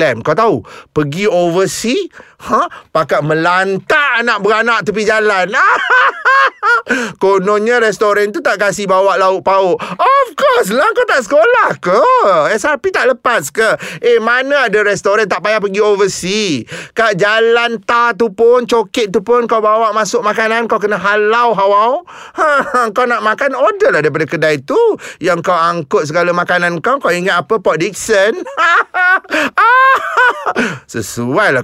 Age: 30-49